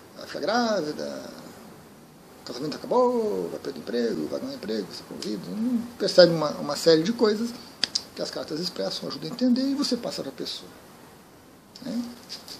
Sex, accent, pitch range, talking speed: male, Brazilian, 160-255 Hz, 170 wpm